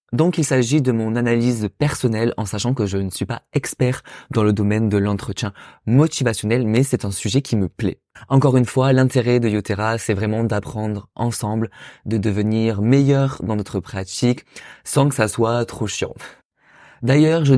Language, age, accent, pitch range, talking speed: French, 20-39, French, 110-140 Hz, 180 wpm